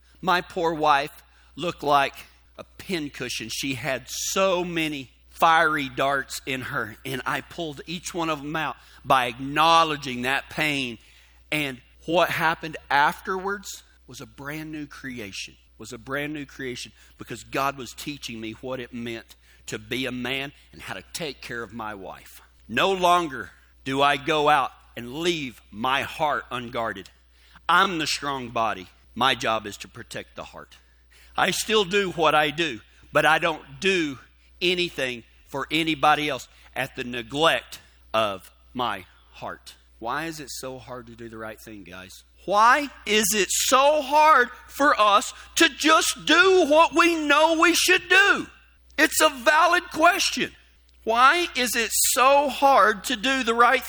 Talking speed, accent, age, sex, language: 160 wpm, American, 50-69, male, English